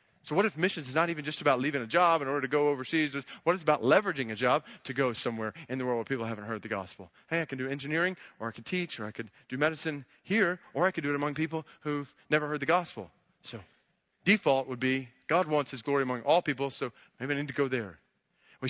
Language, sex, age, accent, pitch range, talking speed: English, male, 30-49, American, 145-185 Hz, 260 wpm